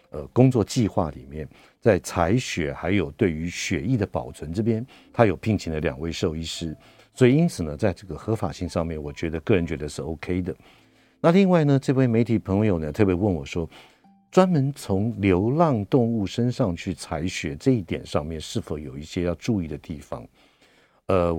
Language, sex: Chinese, male